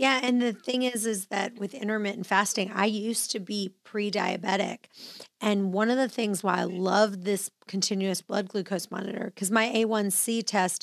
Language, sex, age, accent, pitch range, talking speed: English, female, 40-59, American, 200-240 Hz, 175 wpm